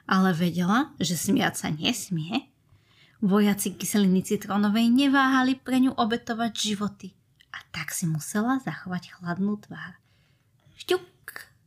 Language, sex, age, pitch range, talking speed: Slovak, female, 20-39, 160-245 Hz, 115 wpm